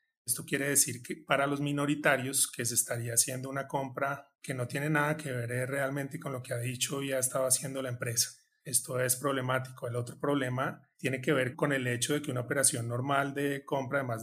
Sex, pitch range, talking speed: male, 125-145 Hz, 220 wpm